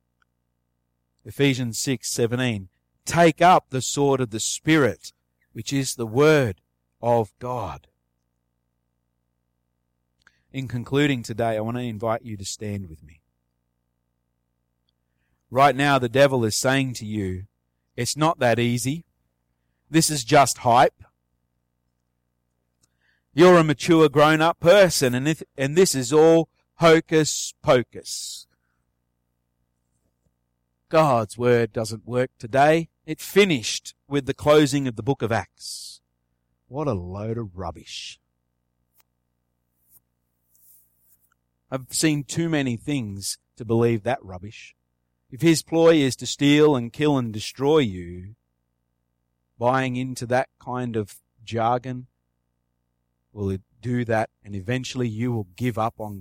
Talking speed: 120 wpm